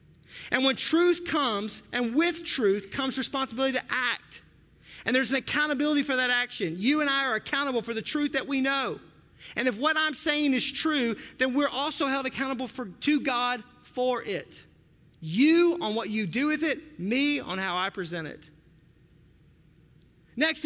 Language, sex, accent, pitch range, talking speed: English, male, American, 200-285 Hz, 170 wpm